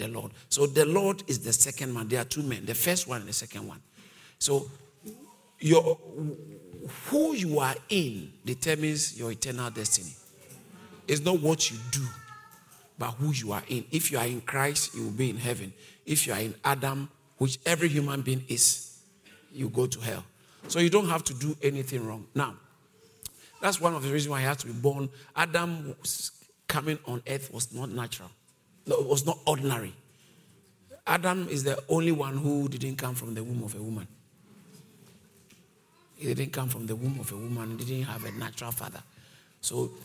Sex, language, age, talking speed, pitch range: male, English, 50-69, 190 wpm, 120-160 Hz